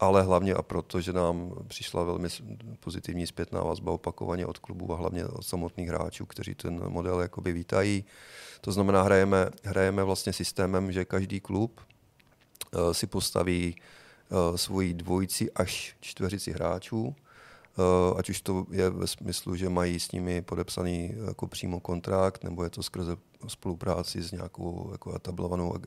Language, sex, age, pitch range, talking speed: Czech, male, 30-49, 90-100 Hz, 145 wpm